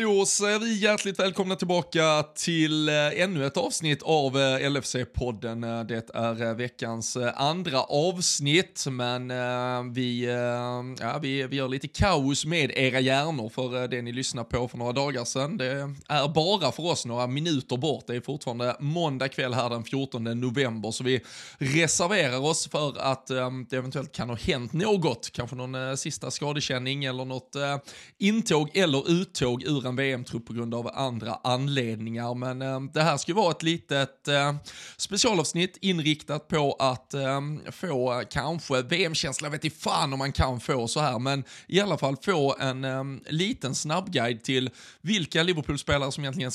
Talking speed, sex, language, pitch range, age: 160 wpm, male, Swedish, 125-155 Hz, 20-39